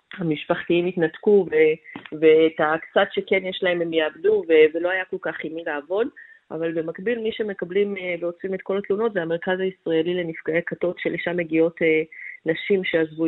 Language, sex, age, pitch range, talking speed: Hebrew, female, 30-49, 165-200 Hz, 160 wpm